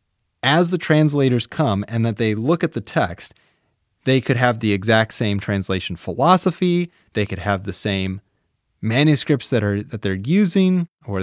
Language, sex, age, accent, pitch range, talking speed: English, male, 30-49, American, 105-145 Hz, 165 wpm